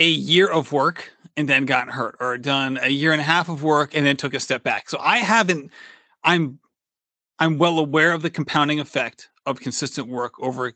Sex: male